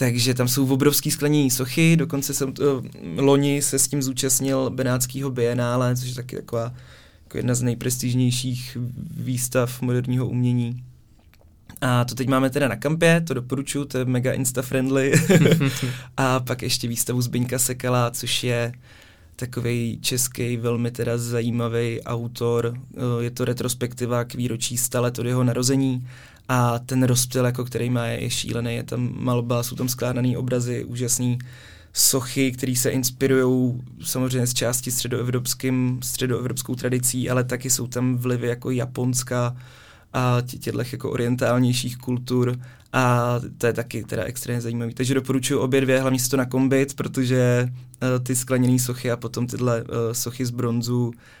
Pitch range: 120-130 Hz